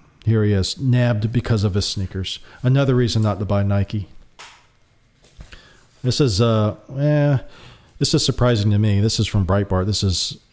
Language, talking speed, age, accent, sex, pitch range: English, 165 wpm, 40-59, American, male, 105-125 Hz